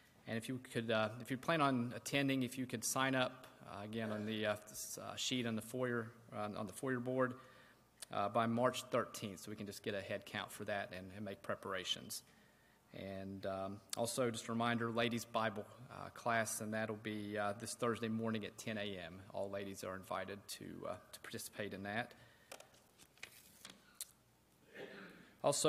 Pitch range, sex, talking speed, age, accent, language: 110-125 Hz, male, 185 wpm, 30-49, American, English